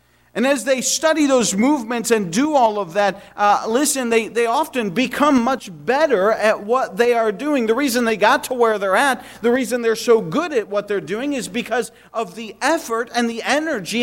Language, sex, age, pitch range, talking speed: English, male, 40-59, 200-255 Hz, 210 wpm